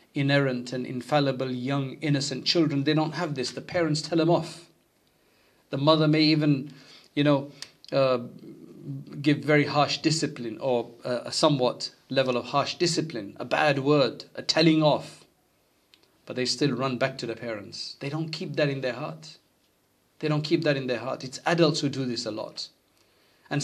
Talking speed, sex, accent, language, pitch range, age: 175 wpm, male, South African, English, 140-165 Hz, 40-59